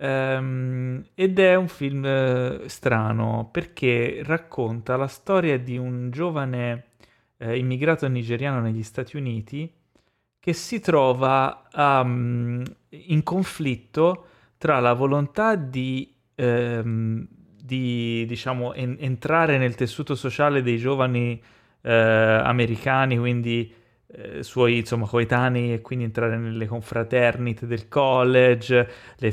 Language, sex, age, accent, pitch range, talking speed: Italian, male, 30-49, native, 115-140 Hz, 95 wpm